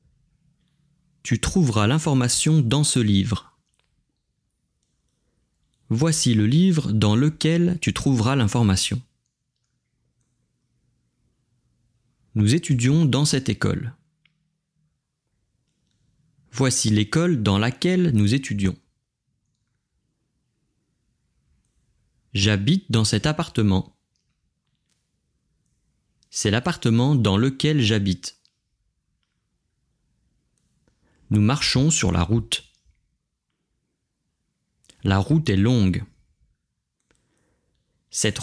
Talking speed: 70 wpm